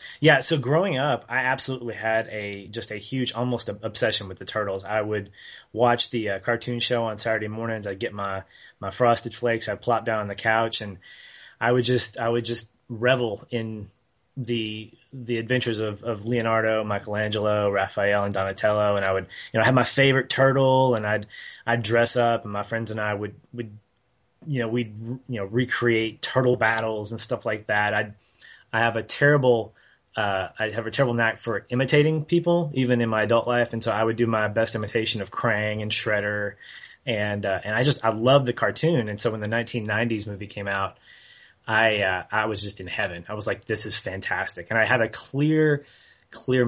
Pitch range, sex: 105-125 Hz, male